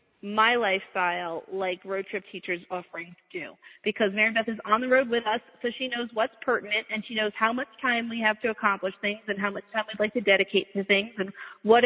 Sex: female